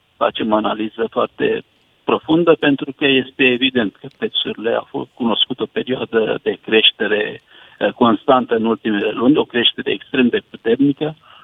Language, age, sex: Romanian, 60-79, male